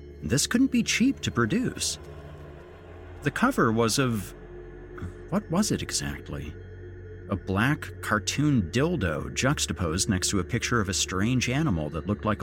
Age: 40-59